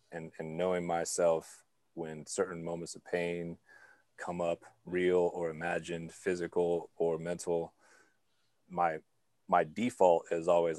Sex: male